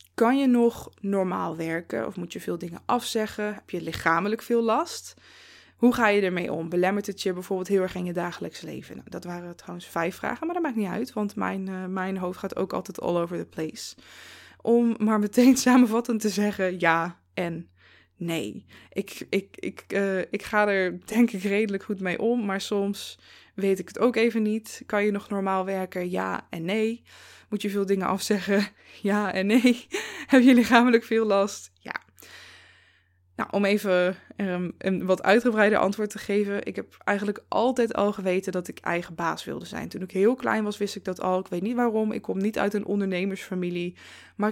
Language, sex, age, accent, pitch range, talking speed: Dutch, female, 20-39, Dutch, 180-220 Hz, 200 wpm